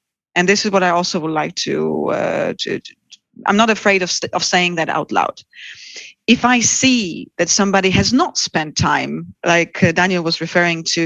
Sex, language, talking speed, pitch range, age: female, English, 195 wpm, 175-205 Hz, 40-59